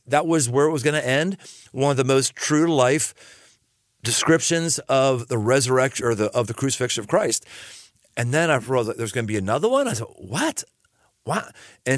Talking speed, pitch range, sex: 205 wpm, 105-140 Hz, male